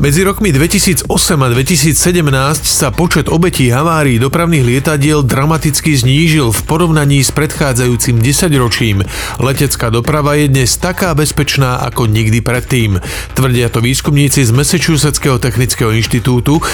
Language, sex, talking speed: Slovak, male, 125 wpm